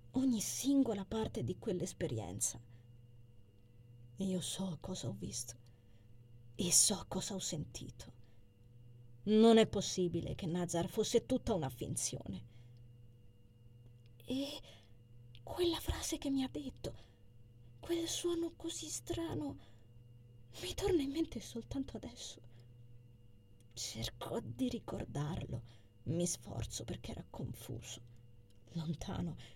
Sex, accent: female, native